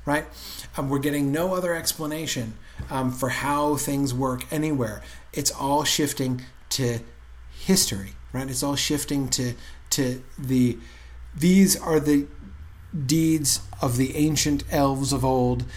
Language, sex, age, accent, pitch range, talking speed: English, male, 40-59, American, 115-140 Hz, 135 wpm